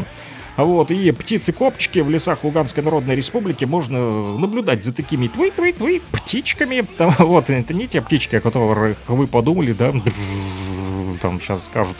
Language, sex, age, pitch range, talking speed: Russian, male, 30-49, 125-175 Hz, 135 wpm